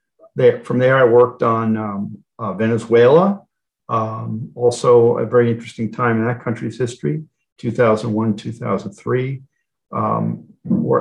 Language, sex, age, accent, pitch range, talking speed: English, male, 50-69, American, 105-120 Hz, 110 wpm